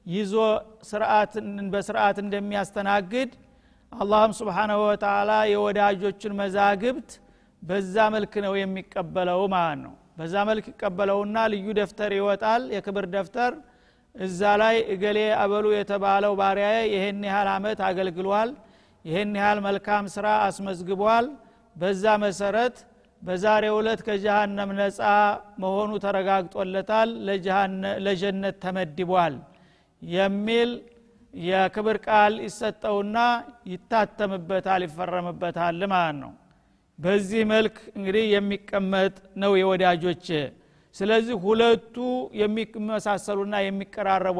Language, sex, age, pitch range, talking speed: Amharic, male, 50-69, 190-215 Hz, 90 wpm